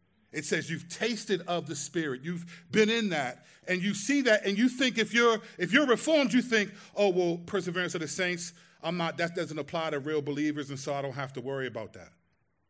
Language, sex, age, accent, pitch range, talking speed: English, male, 40-59, American, 175-230 Hz, 225 wpm